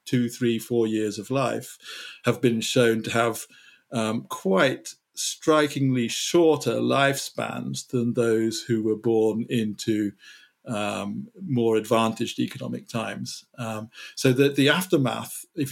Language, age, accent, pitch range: English, 50-69, British, 115-135 Hz